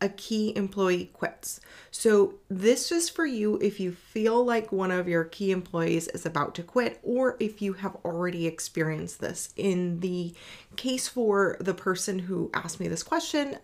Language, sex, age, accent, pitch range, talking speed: English, female, 30-49, American, 165-200 Hz, 175 wpm